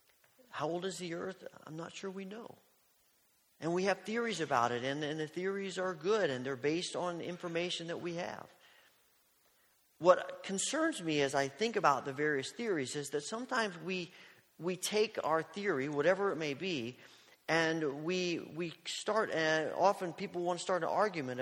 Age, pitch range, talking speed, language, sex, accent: 40-59, 155-195 Hz, 180 wpm, English, male, American